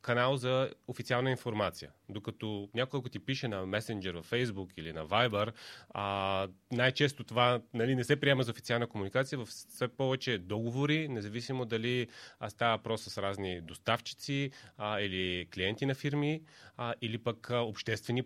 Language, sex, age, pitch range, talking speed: Bulgarian, male, 30-49, 100-130 Hz, 140 wpm